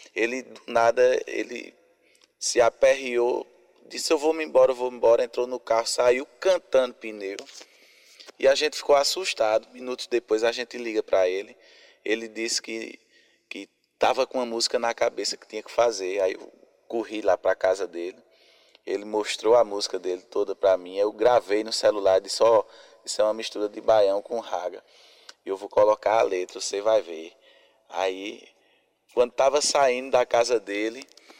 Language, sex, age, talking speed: Portuguese, male, 20-39, 170 wpm